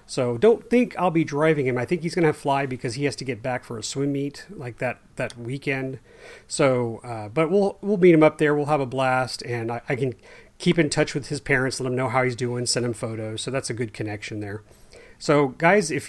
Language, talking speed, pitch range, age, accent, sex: English, 250 wpm, 125-150 Hz, 40-59, American, male